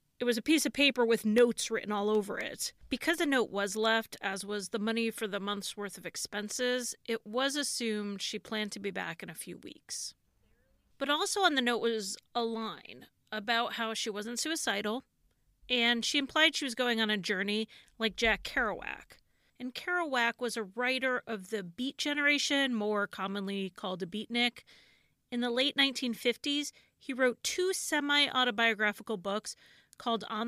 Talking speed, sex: 175 wpm, female